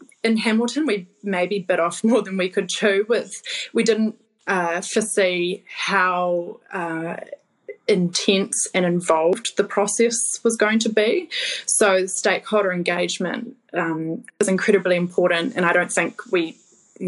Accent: Australian